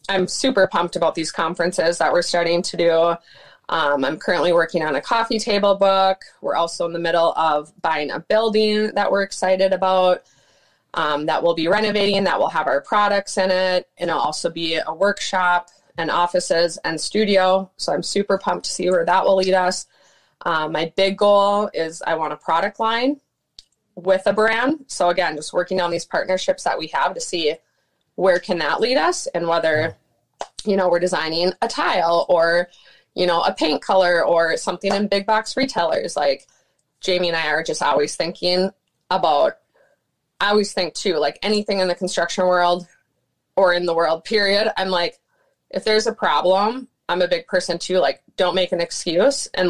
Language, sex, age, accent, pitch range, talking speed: English, female, 20-39, American, 170-200 Hz, 190 wpm